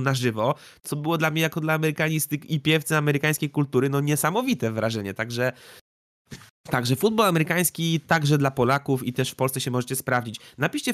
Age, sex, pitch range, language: 20-39, male, 115-150 Hz, Polish